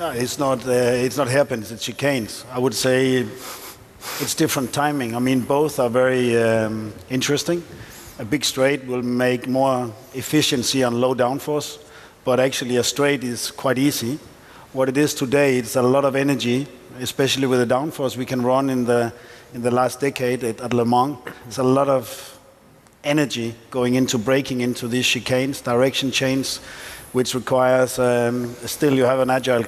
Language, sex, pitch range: English, male, 120-135 Hz